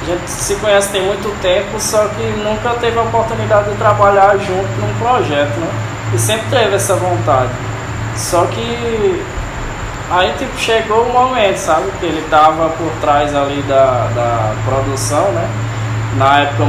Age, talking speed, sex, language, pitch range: 20-39, 160 wpm, male, Portuguese, 115-180 Hz